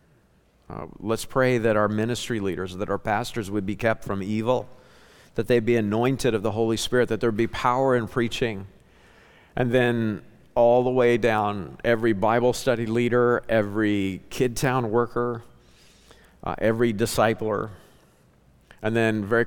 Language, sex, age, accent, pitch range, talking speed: English, male, 50-69, American, 105-120 Hz, 150 wpm